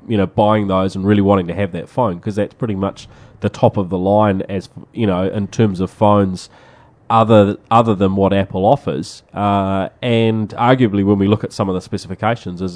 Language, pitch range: English, 95-115 Hz